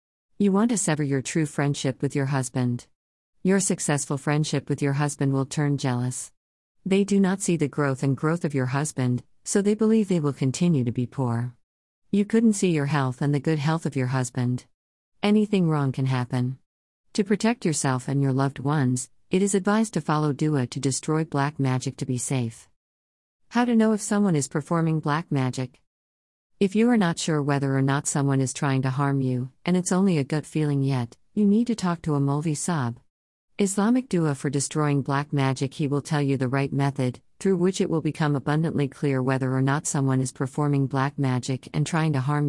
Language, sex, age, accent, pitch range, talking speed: English, female, 50-69, American, 130-160 Hz, 205 wpm